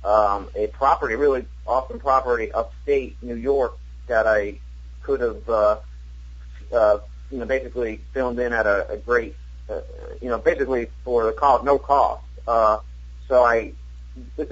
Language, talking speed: English, 155 wpm